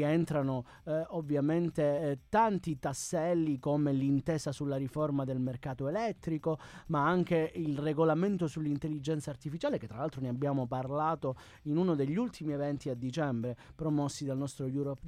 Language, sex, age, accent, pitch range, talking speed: Italian, male, 30-49, native, 135-165 Hz, 145 wpm